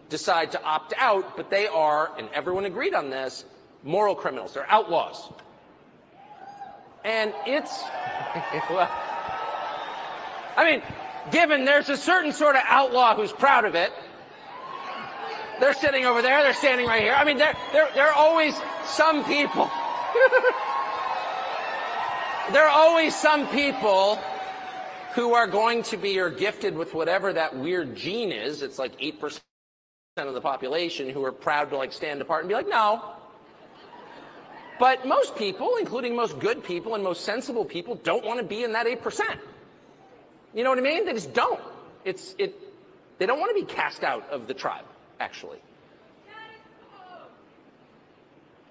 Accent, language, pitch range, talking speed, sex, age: American, English, 195-315 Hz, 150 wpm, male, 40-59